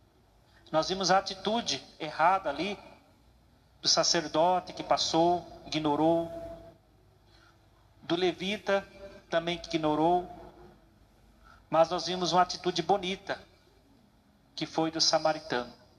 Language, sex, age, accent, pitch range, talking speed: Portuguese, male, 40-59, Brazilian, 110-180 Hz, 100 wpm